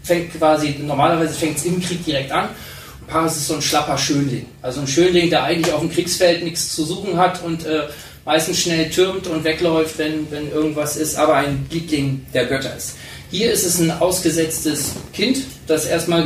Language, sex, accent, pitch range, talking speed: German, male, German, 145-170 Hz, 190 wpm